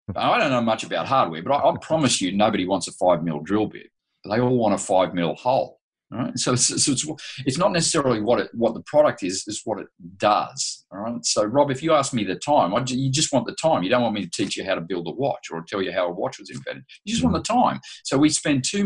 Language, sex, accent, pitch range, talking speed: English, male, Australian, 100-135 Hz, 285 wpm